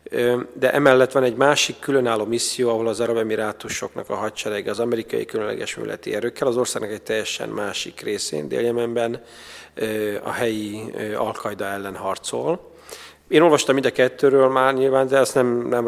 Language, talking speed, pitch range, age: Hungarian, 155 wpm, 110-130 Hz, 40-59